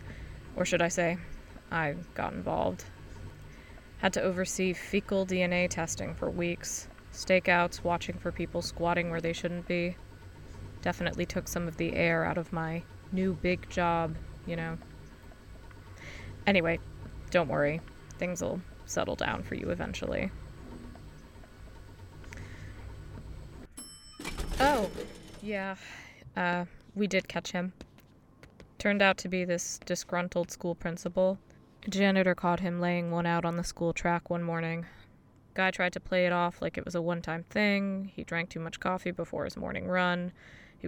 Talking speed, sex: 145 wpm, female